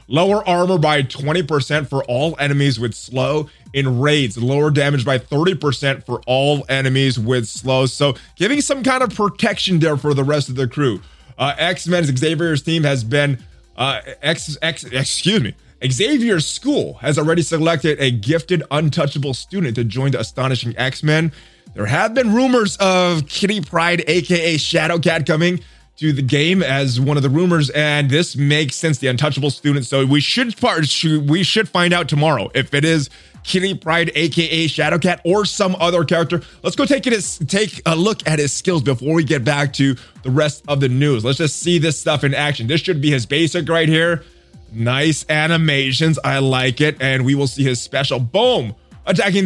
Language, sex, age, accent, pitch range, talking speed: English, male, 20-39, American, 135-170 Hz, 180 wpm